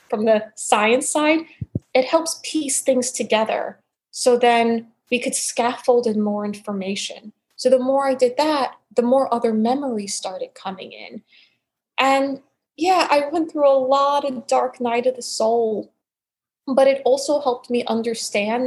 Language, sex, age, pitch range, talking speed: English, female, 20-39, 205-260 Hz, 160 wpm